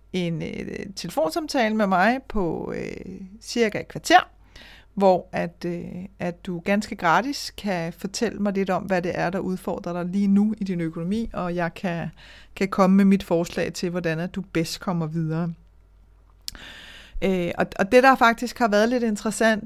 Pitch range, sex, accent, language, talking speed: 175-215 Hz, female, native, Danish, 150 wpm